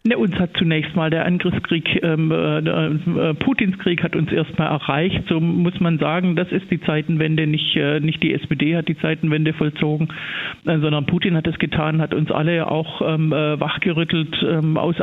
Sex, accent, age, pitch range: male, German, 50-69, 150-170 Hz